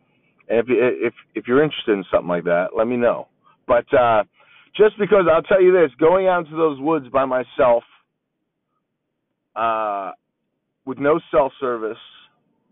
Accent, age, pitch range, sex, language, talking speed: American, 40-59, 110-160 Hz, male, English, 150 wpm